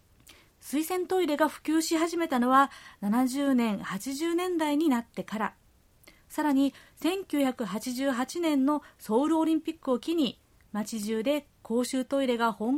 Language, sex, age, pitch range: Japanese, female, 40-59, 215-300 Hz